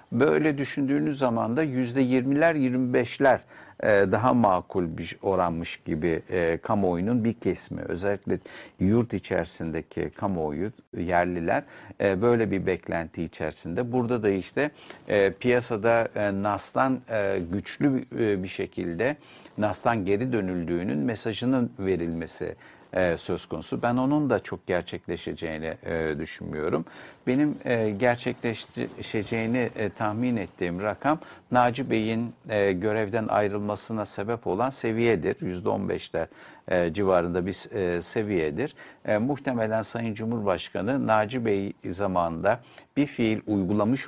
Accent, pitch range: native, 95-125 Hz